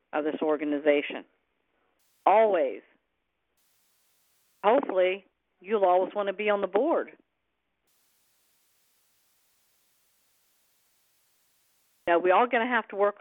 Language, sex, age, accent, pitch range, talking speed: English, female, 50-69, American, 175-210 Hz, 95 wpm